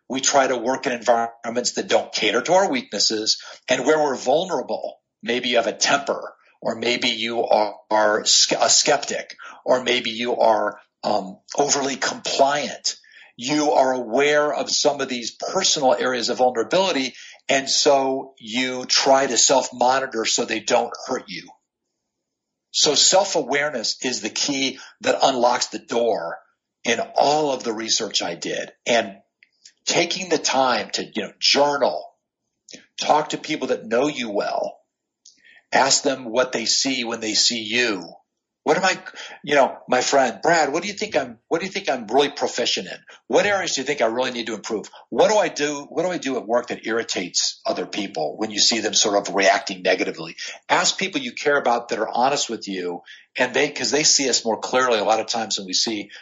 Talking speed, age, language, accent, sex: 185 wpm, 50-69, English, American, male